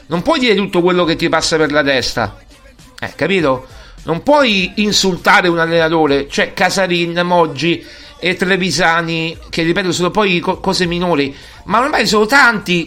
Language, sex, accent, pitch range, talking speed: Italian, male, native, 160-210 Hz, 160 wpm